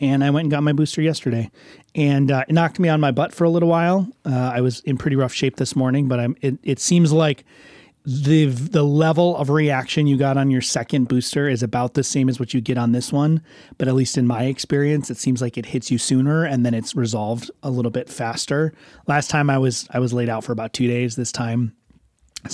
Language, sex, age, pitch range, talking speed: English, male, 30-49, 125-150 Hz, 250 wpm